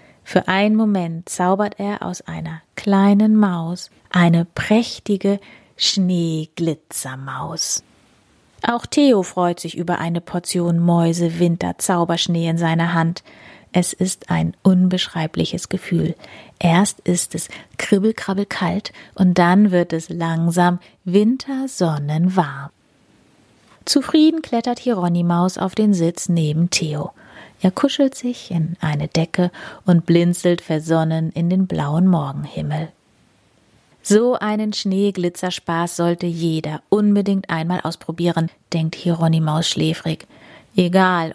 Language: German